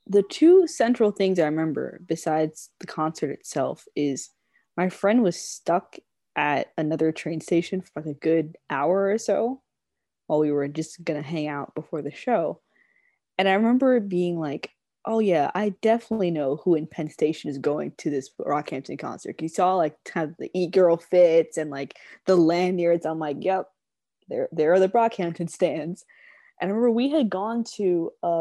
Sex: female